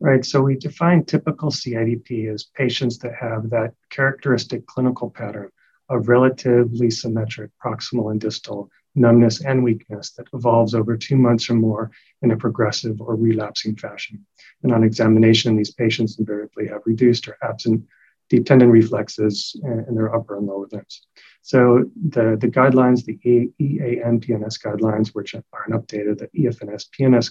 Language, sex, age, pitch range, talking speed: English, male, 40-59, 110-125 Hz, 160 wpm